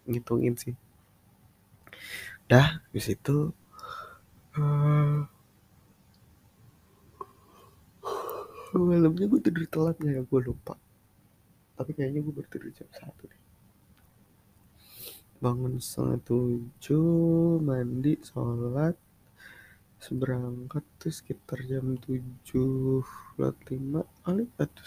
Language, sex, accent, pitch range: English, male, Indonesian, 120-155 Hz